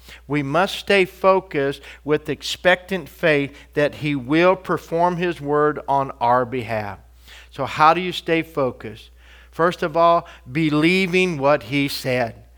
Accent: American